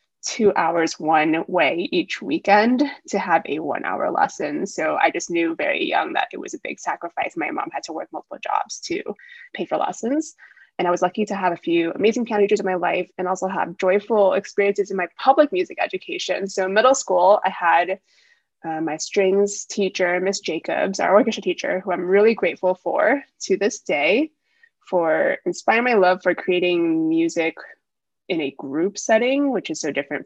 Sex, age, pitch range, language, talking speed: female, 20-39, 175-270 Hz, English, 190 wpm